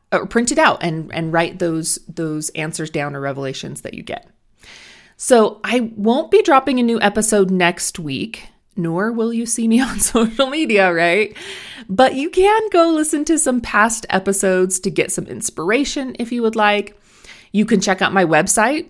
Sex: female